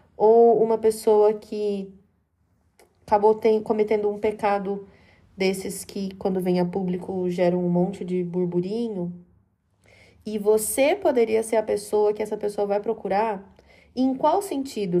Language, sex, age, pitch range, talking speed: Portuguese, female, 20-39, 185-235 Hz, 135 wpm